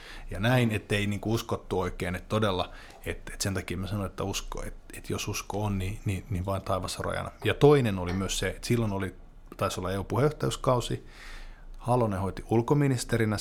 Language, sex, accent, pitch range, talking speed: Finnish, male, native, 95-115 Hz, 185 wpm